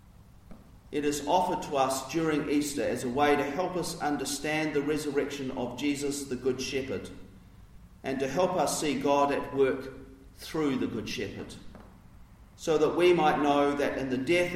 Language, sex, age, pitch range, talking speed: English, male, 40-59, 115-155 Hz, 175 wpm